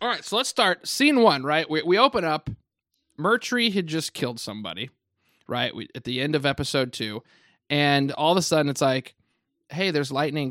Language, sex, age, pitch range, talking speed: English, male, 20-39, 125-155 Hz, 195 wpm